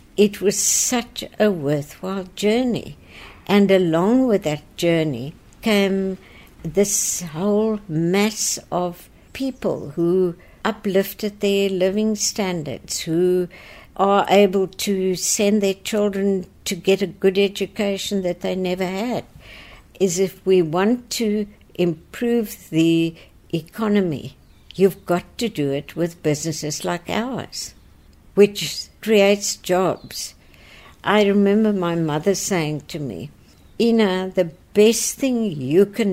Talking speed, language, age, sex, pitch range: 120 wpm, English, 60-79, female, 160-200 Hz